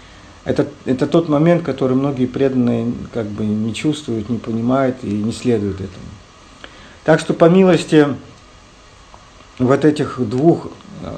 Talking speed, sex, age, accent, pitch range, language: 120 wpm, male, 50-69, native, 110-135 Hz, Russian